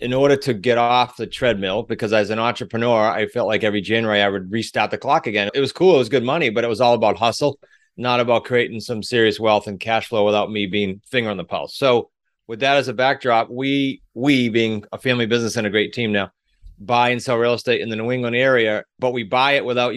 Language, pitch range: English, 105-125 Hz